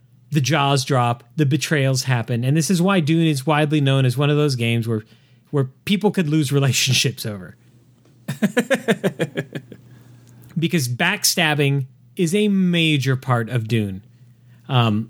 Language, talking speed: English, 140 wpm